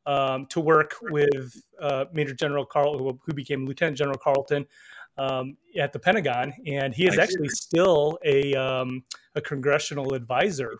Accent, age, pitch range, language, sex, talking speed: American, 30-49, 140-170 Hz, English, male, 150 wpm